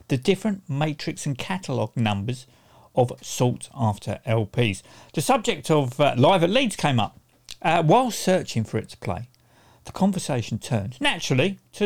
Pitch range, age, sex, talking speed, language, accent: 120-165 Hz, 50-69, male, 150 wpm, English, British